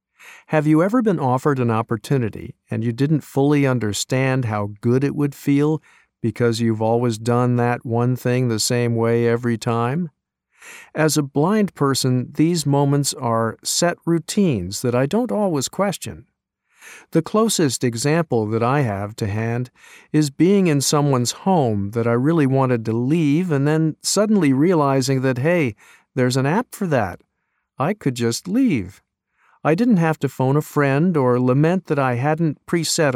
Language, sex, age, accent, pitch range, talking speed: English, male, 50-69, American, 120-155 Hz, 165 wpm